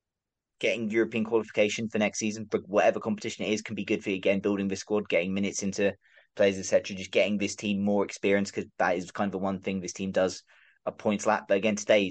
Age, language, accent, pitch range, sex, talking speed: 20-39, English, British, 95-105 Hz, male, 240 wpm